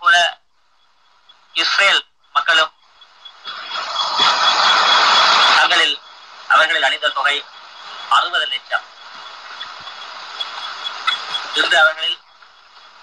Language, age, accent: Tamil, 30-49, native